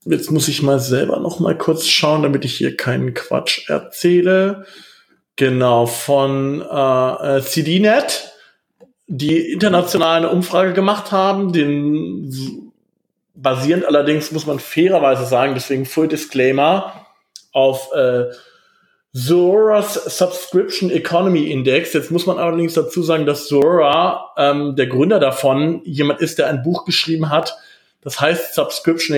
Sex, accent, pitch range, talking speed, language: male, German, 135-175 Hz, 130 wpm, German